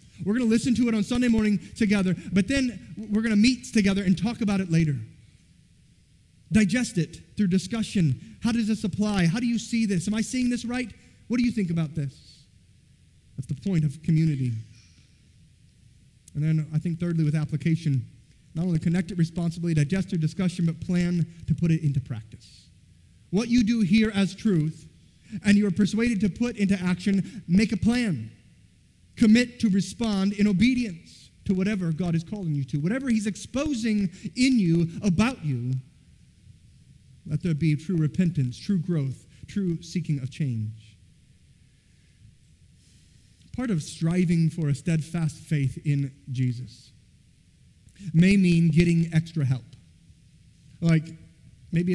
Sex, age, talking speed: male, 30-49, 155 wpm